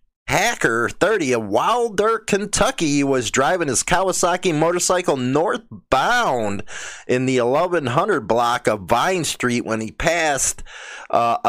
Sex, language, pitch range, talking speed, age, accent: male, English, 120-150 Hz, 115 wpm, 30-49, American